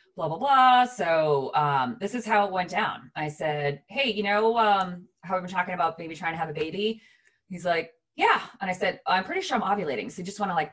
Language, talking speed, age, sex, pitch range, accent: English, 250 wpm, 30-49, female, 145-205 Hz, American